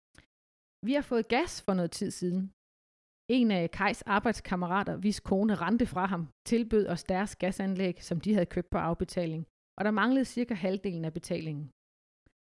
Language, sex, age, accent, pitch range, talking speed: Danish, female, 30-49, native, 170-215 Hz, 165 wpm